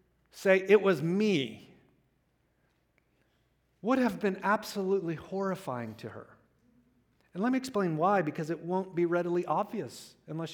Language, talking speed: English, 130 wpm